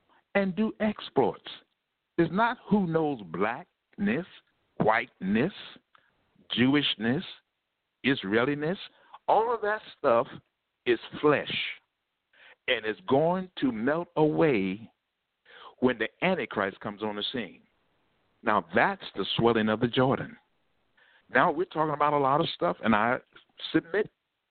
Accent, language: American, English